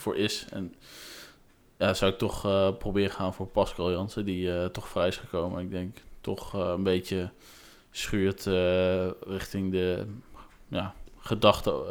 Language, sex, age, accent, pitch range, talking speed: Dutch, male, 20-39, Dutch, 90-100 Hz, 155 wpm